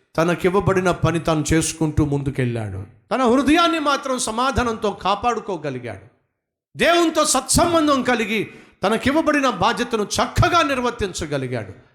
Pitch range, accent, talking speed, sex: 130-215 Hz, native, 90 wpm, male